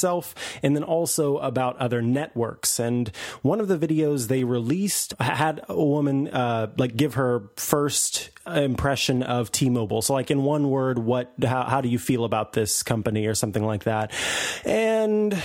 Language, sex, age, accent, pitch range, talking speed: English, male, 30-49, American, 120-155 Hz, 165 wpm